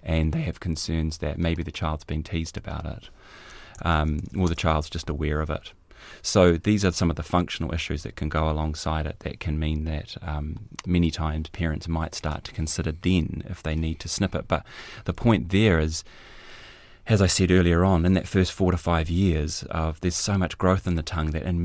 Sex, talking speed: male, 220 wpm